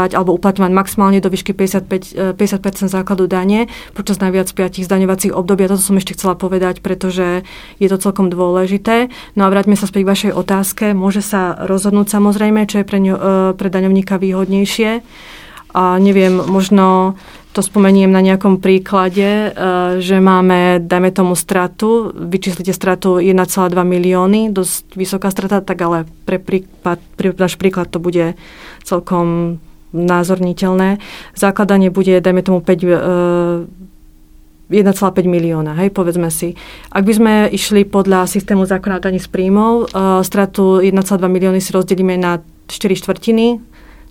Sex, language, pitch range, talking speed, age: female, Slovak, 185-195 Hz, 135 wpm, 30-49